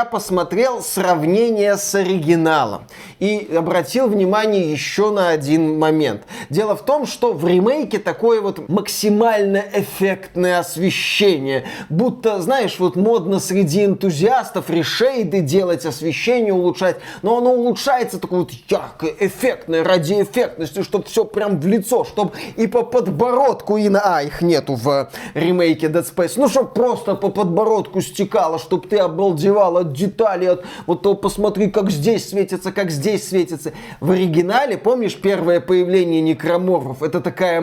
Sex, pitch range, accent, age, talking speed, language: male, 175-215 Hz, native, 20-39, 135 wpm, Russian